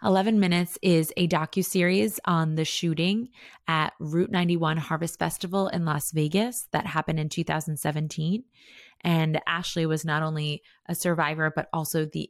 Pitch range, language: 150-180 Hz, English